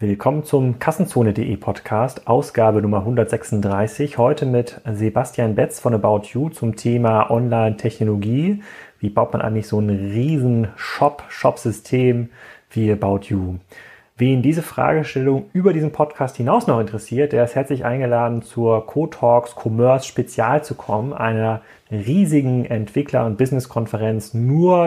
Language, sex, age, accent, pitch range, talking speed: German, male, 30-49, German, 110-135 Hz, 130 wpm